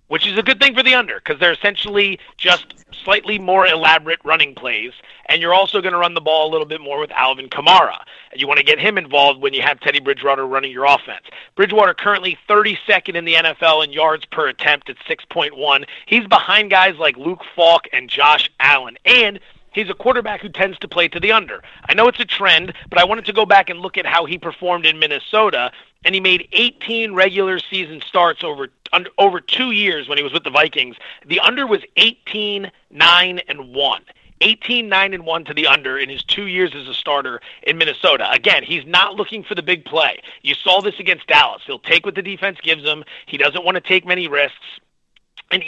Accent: American